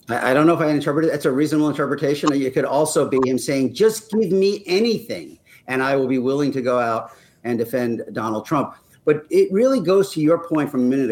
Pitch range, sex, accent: 135-190 Hz, male, American